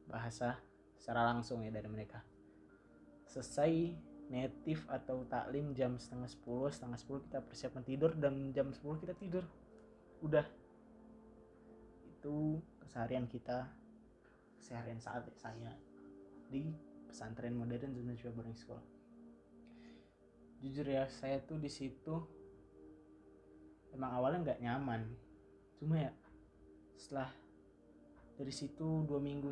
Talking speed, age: 110 wpm, 20-39